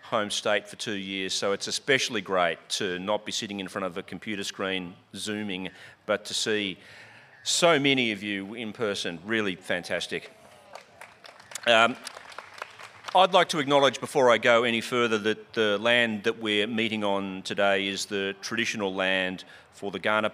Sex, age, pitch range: male, 40-59, 100-120 Hz